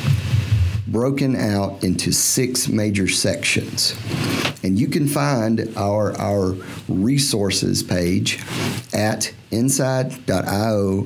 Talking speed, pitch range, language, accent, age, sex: 85 wpm, 100-130 Hz, English, American, 50-69, male